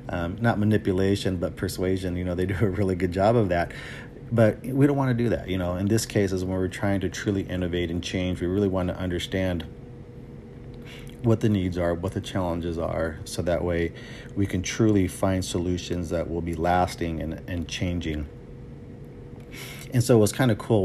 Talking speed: 200 wpm